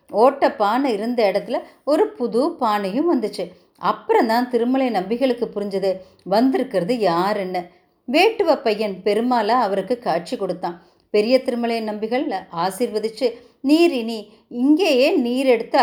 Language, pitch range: Tamil, 200-275 Hz